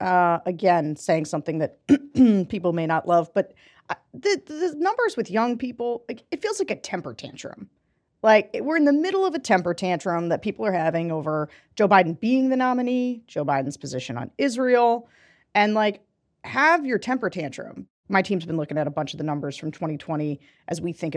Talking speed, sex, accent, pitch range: 195 wpm, female, American, 170-255 Hz